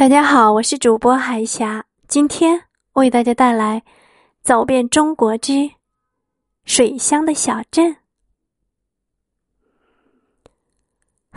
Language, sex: Chinese, female